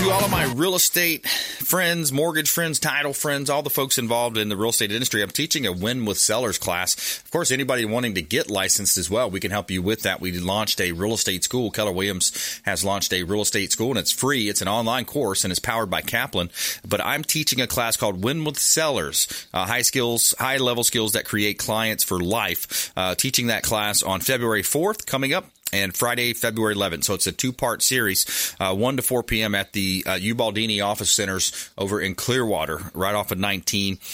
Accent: American